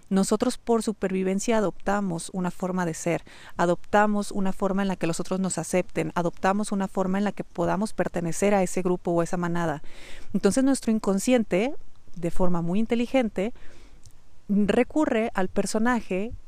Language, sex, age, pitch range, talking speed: Spanish, female, 40-59, 175-215 Hz, 155 wpm